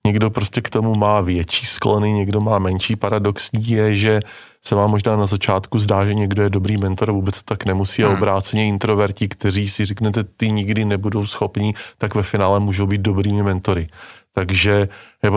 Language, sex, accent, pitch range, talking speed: Czech, male, native, 95-110 Hz, 185 wpm